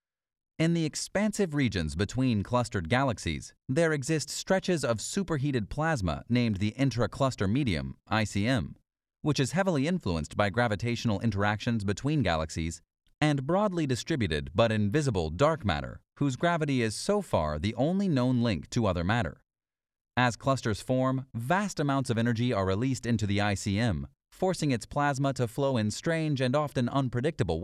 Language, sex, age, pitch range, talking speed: English, male, 30-49, 95-135 Hz, 150 wpm